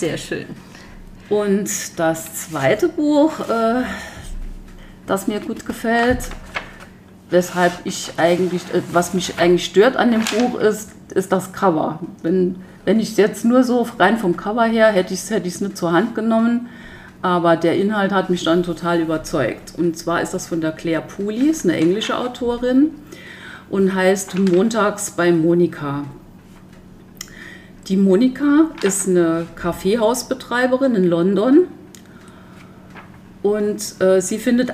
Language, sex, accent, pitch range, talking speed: German, female, German, 170-210 Hz, 135 wpm